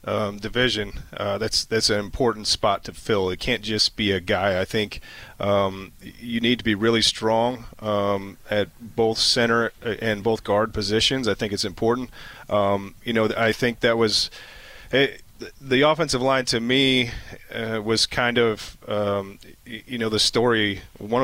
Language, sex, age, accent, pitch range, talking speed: English, male, 30-49, American, 105-120 Hz, 170 wpm